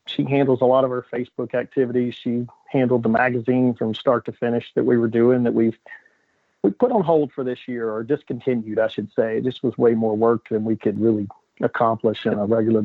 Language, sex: English, male